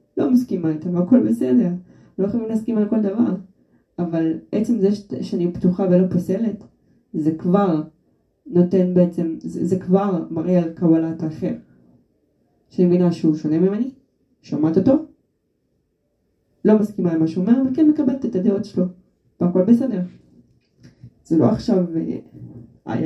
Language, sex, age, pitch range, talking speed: Hebrew, female, 20-39, 170-210 Hz, 140 wpm